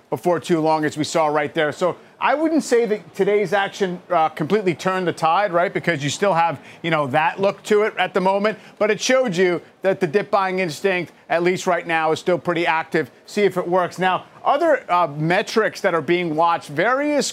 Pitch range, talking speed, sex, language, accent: 165-205 Hz, 220 wpm, male, English, American